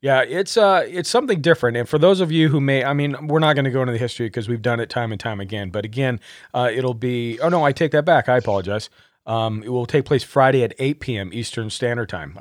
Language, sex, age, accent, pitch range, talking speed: English, male, 40-59, American, 110-130 Hz, 260 wpm